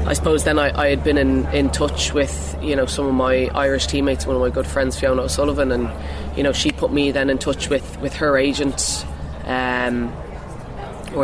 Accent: Irish